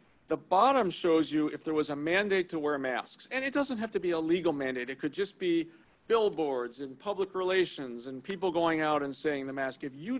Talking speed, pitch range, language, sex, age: 230 wpm, 140-190 Hz, English, male, 50-69